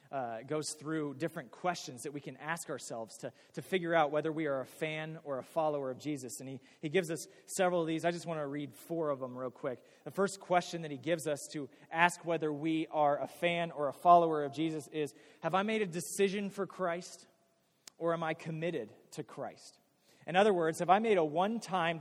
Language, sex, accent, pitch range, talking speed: English, male, American, 140-170 Hz, 225 wpm